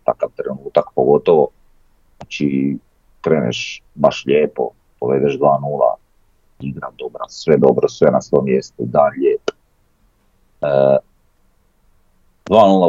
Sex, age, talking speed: male, 40-59, 90 wpm